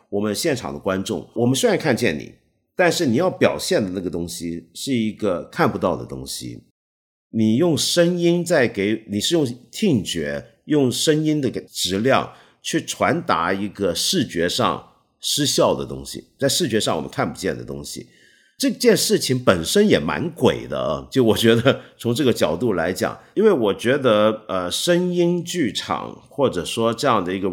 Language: Chinese